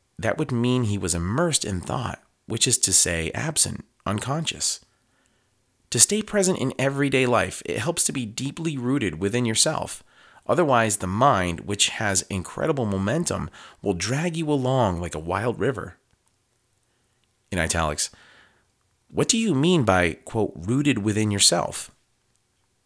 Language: English